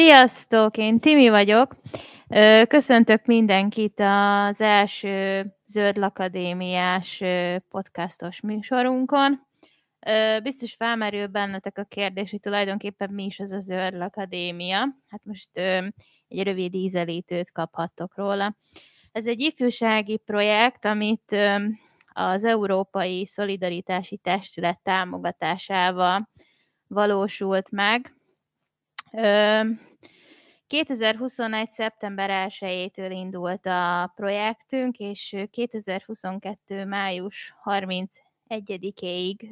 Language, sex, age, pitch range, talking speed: Hungarian, female, 20-39, 185-220 Hz, 80 wpm